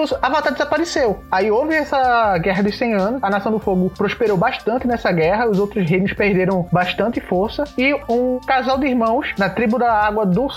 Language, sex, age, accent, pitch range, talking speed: Portuguese, male, 20-39, Brazilian, 190-245 Hz, 185 wpm